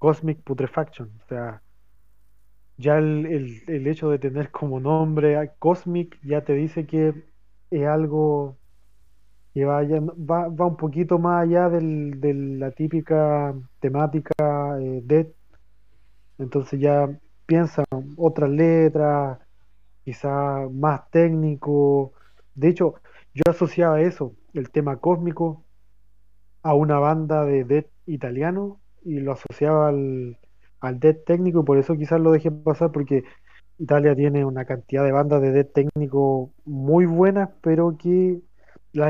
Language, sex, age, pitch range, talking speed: Spanish, male, 30-49, 130-160 Hz, 135 wpm